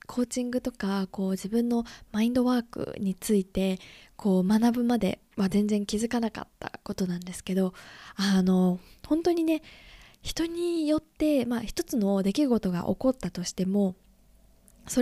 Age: 20-39